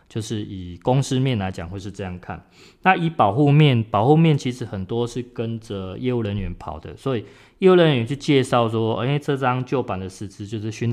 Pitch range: 95-125 Hz